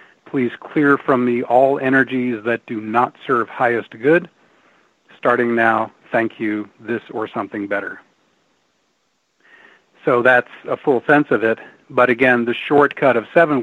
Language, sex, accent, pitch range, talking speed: English, male, American, 115-135 Hz, 145 wpm